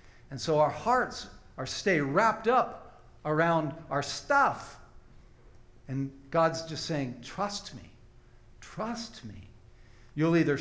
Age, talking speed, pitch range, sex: 60-79, 120 wpm, 130-215 Hz, male